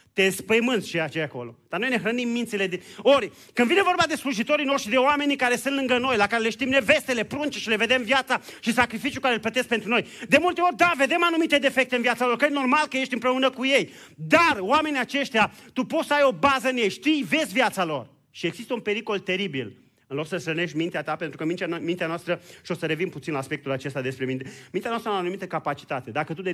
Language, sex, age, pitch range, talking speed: Romanian, male, 30-49, 155-245 Hz, 245 wpm